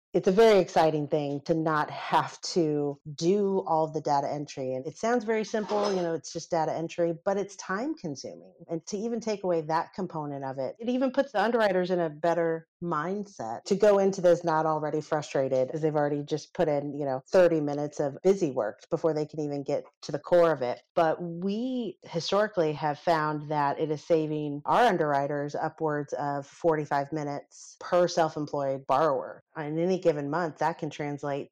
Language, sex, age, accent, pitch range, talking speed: English, female, 40-59, American, 145-180 Hz, 195 wpm